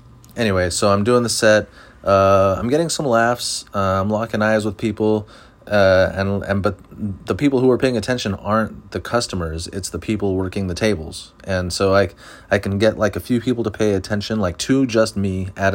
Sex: male